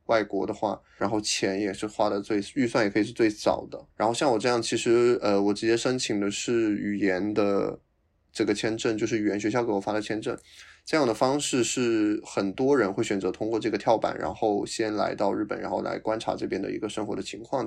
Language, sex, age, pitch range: Chinese, male, 20-39, 100-115 Hz